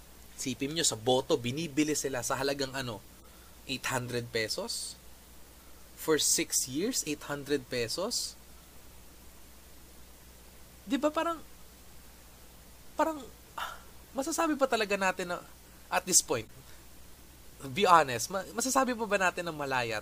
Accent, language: native, Filipino